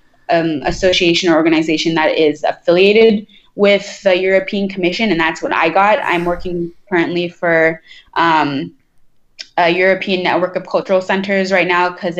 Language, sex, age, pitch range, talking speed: English, female, 20-39, 160-180 Hz, 150 wpm